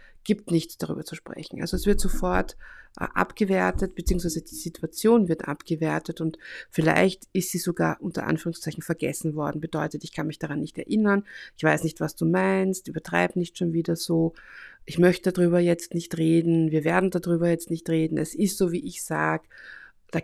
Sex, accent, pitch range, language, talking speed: female, German, 160-180 Hz, German, 185 wpm